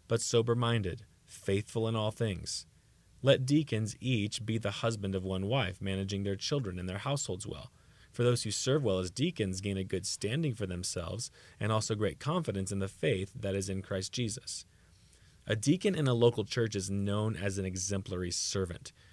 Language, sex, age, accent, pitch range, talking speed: English, male, 30-49, American, 95-125 Hz, 185 wpm